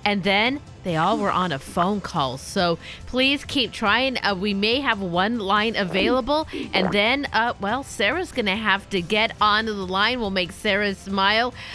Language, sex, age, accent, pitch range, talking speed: English, female, 40-59, American, 200-255 Hz, 190 wpm